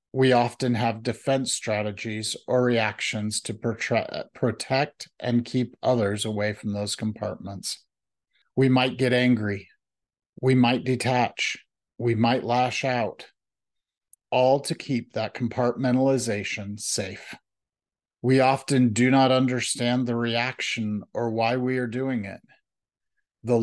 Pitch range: 110-130 Hz